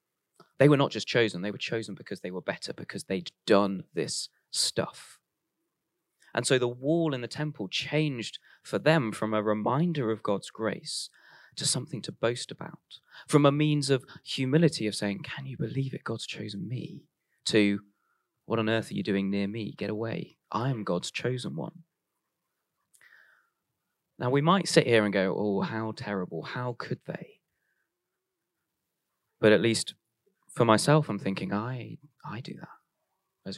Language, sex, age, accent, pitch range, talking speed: English, male, 20-39, British, 105-155 Hz, 165 wpm